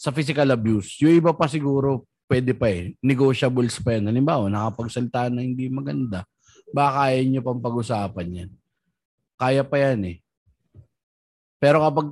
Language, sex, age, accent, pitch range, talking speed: Filipino, male, 20-39, native, 110-145 Hz, 150 wpm